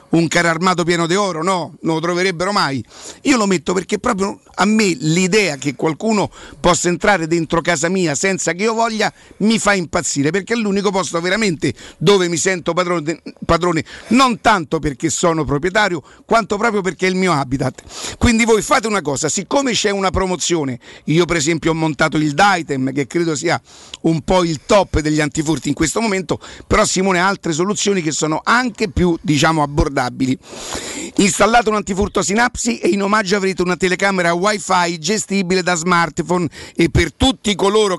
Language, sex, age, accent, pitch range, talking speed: Italian, male, 50-69, native, 165-205 Hz, 175 wpm